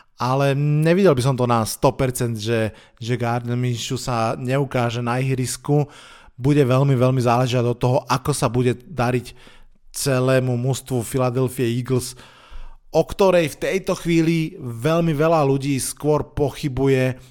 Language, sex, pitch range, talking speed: Slovak, male, 125-145 Hz, 130 wpm